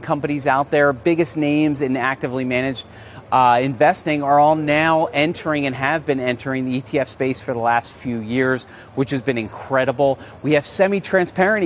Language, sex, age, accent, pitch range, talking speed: English, male, 40-59, American, 125-150 Hz, 170 wpm